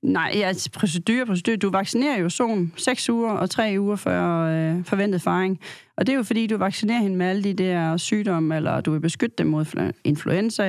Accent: native